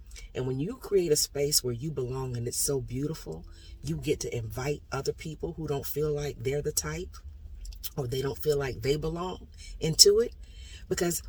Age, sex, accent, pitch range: 40-59, female, American, 110-145 Hz